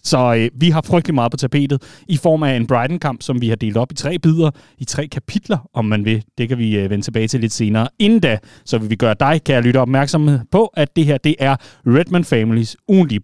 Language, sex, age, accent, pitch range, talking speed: Danish, male, 30-49, native, 120-165 Hz, 255 wpm